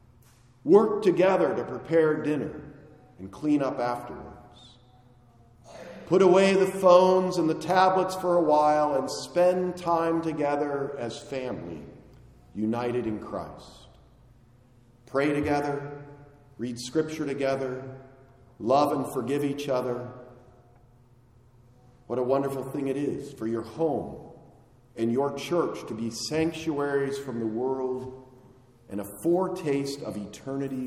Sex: male